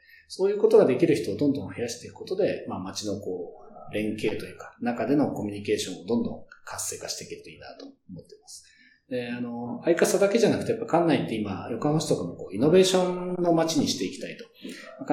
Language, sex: Japanese, male